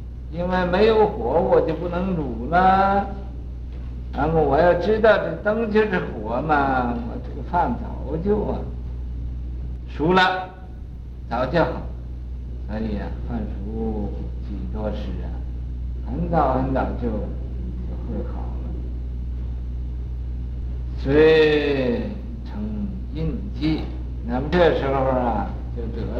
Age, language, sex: 60-79, Chinese, male